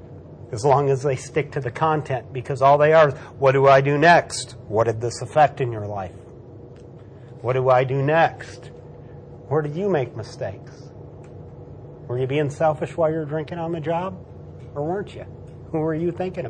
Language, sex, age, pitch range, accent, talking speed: English, male, 40-59, 125-170 Hz, American, 195 wpm